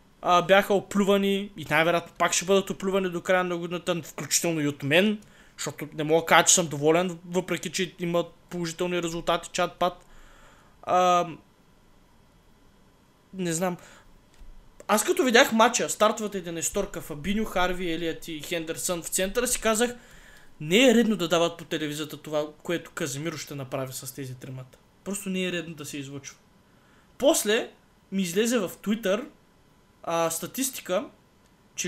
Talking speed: 150 wpm